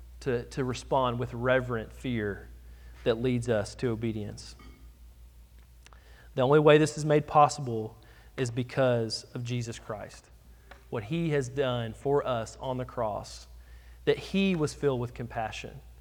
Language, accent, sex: English, American, male